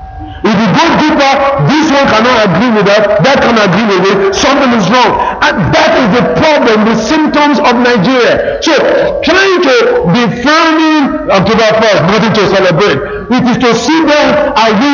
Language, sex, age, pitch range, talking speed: English, male, 50-69, 205-285 Hz, 175 wpm